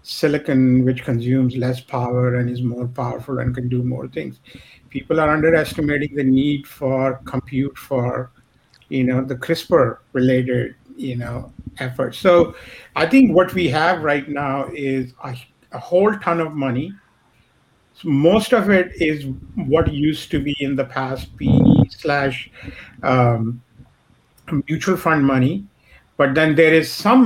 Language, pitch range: English, 125-150 Hz